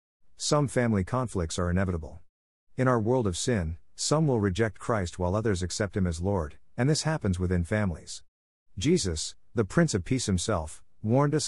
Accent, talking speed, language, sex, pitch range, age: American, 175 wpm, English, male, 90-115 Hz, 50-69